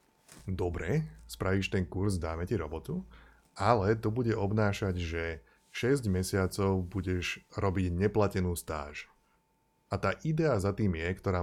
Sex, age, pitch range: male, 20-39, 90-110 Hz